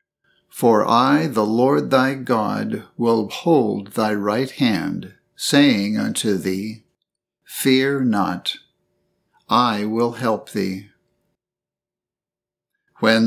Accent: American